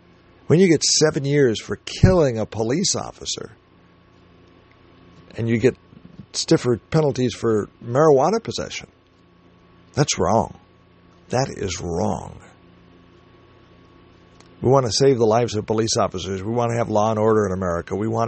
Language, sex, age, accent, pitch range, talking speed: English, male, 50-69, American, 95-130 Hz, 140 wpm